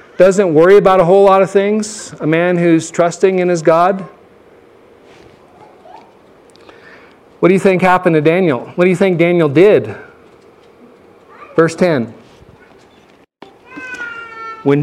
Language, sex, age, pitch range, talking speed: English, male, 40-59, 165-210 Hz, 125 wpm